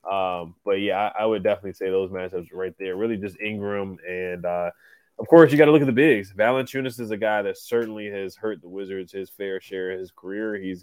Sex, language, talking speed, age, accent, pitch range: male, English, 240 wpm, 20-39, American, 90-110 Hz